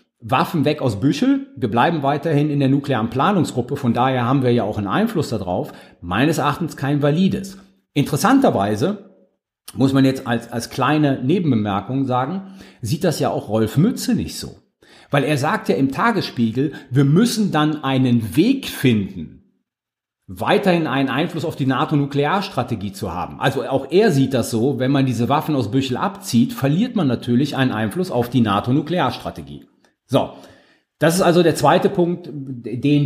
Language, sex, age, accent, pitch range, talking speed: German, male, 40-59, German, 120-165 Hz, 165 wpm